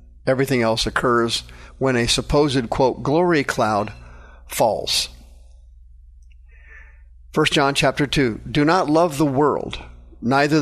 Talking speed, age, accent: 115 wpm, 50-69, American